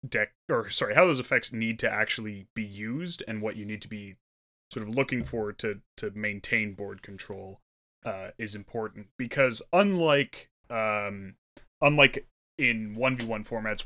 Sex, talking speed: male, 155 wpm